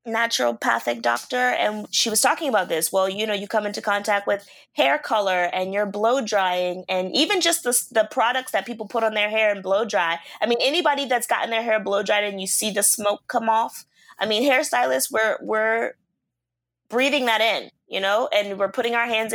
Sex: female